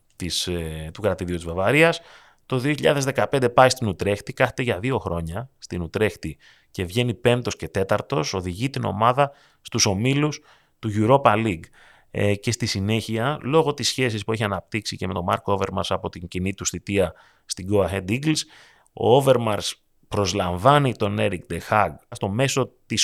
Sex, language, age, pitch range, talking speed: male, Greek, 30-49, 90-120 Hz, 165 wpm